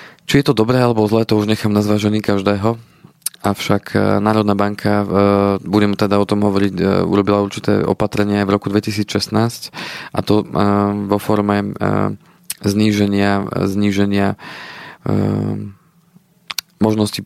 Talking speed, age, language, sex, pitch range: 110 wpm, 20-39, Slovak, male, 100-110 Hz